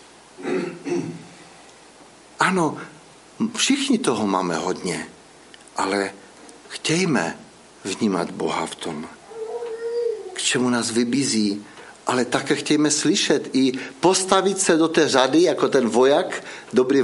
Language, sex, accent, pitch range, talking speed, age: Czech, male, native, 120-165 Hz, 100 wpm, 60-79